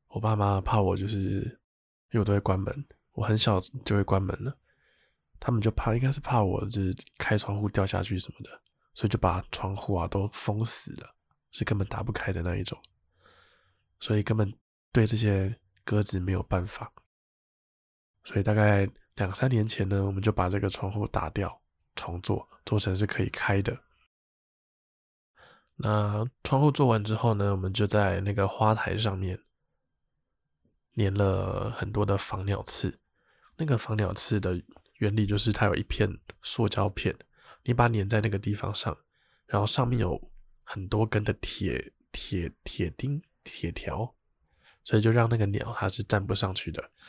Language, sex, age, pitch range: Chinese, male, 20-39, 100-115 Hz